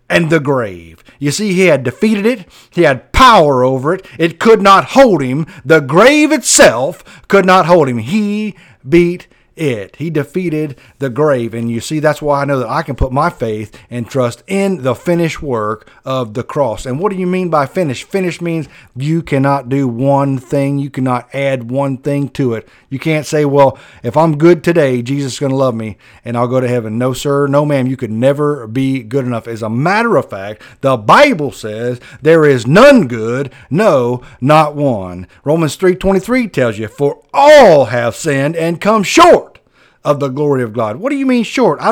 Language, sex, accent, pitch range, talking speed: English, male, American, 130-180 Hz, 205 wpm